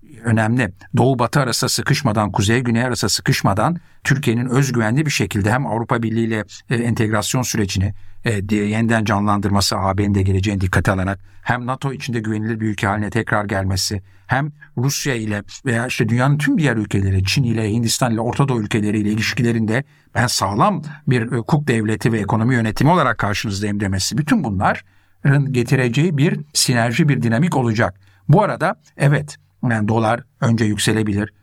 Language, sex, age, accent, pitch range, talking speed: Turkish, male, 60-79, native, 105-140 Hz, 155 wpm